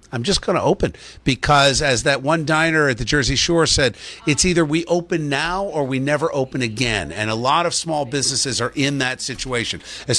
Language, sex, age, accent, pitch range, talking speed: English, male, 50-69, American, 120-160 Hz, 210 wpm